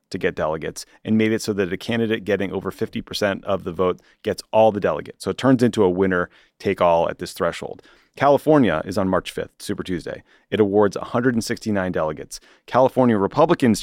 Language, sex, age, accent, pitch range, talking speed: English, male, 30-49, American, 95-115 Hz, 190 wpm